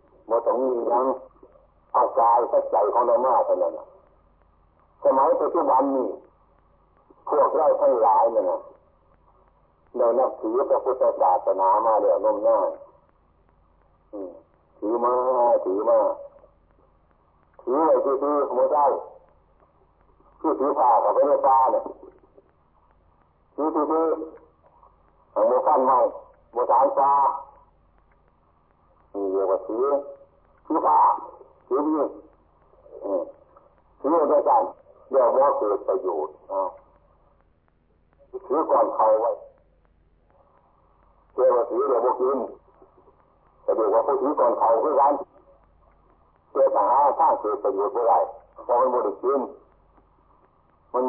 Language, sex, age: Thai, male, 60-79